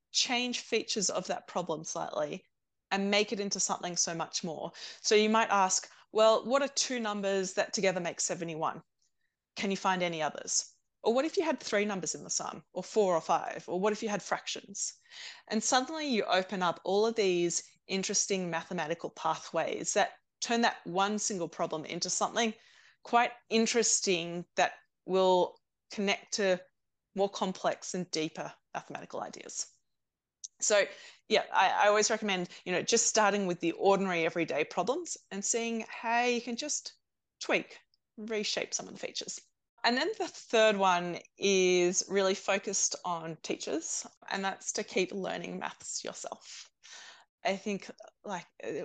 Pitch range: 180-230 Hz